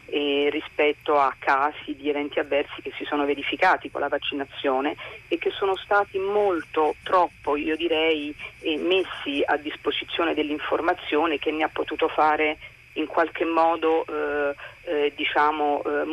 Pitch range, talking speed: 150-200 Hz, 140 wpm